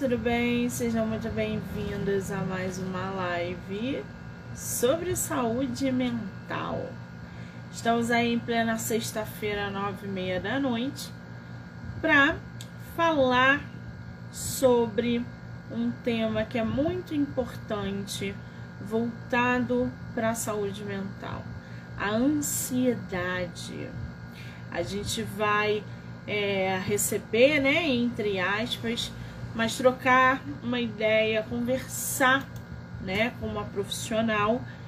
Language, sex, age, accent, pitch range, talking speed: Portuguese, female, 20-39, Brazilian, 160-235 Hz, 95 wpm